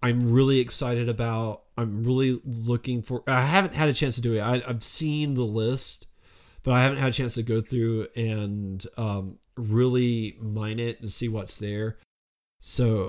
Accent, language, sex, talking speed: American, English, male, 185 wpm